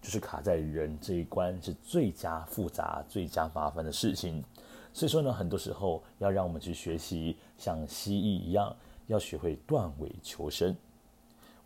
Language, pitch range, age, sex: Chinese, 80-105 Hz, 30-49, male